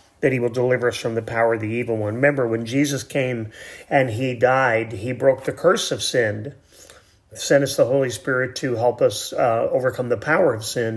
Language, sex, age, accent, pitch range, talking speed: English, male, 30-49, American, 110-130 Hz, 215 wpm